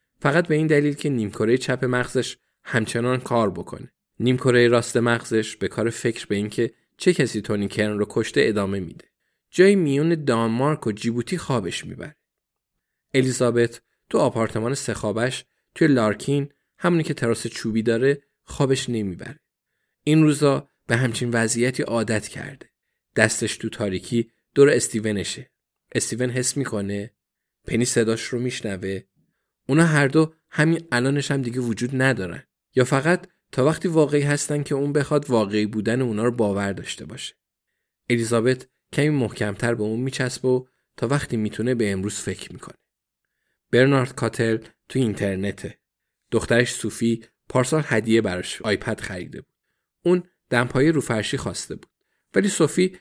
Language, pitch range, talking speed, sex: Persian, 110-140 Hz, 140 wpm, male